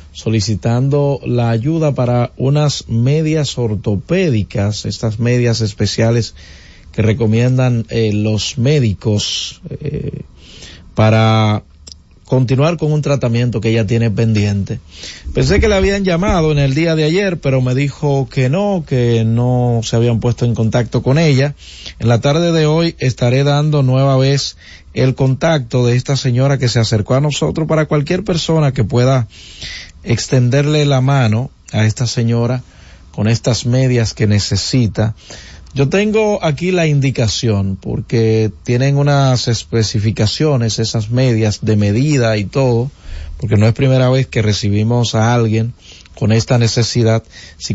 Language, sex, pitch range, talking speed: Spanish, male, 110-140 Hz, 140 wpm